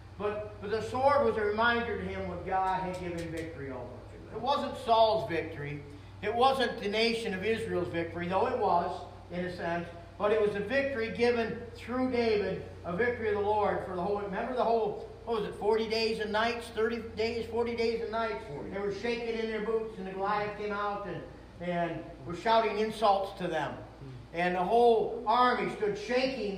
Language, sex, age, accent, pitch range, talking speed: English, male, 40-59, American, 185-235 Hz, 200 wpm